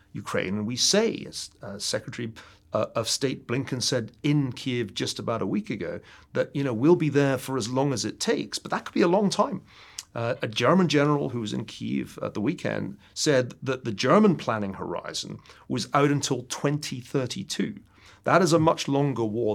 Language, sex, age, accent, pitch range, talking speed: English, male, 40-59, British, 110-150 Hz, 195 wpm